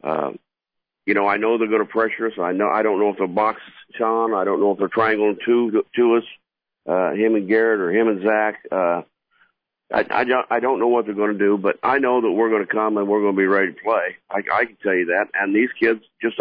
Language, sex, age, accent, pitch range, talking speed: English, male, 50-69, American, 105-120 Hz, 270 wpm